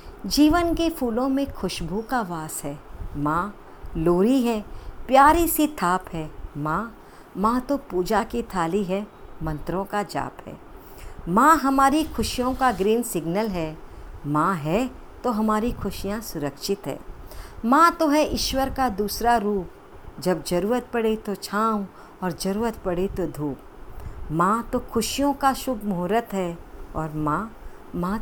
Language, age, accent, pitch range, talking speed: Hindi, 50-69, native, 175-255 Hz, 140 wpm